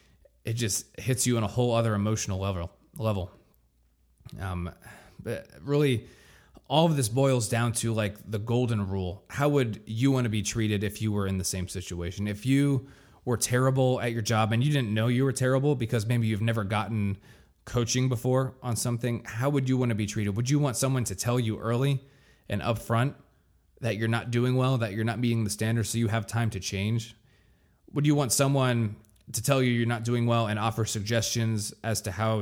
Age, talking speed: 20-39, 205 wpm